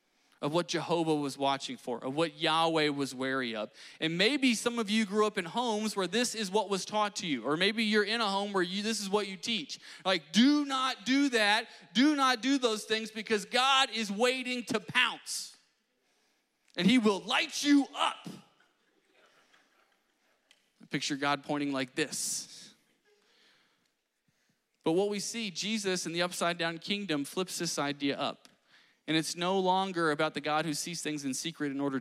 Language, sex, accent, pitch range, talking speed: English, male, American, 145-215 Hz, 180 wpm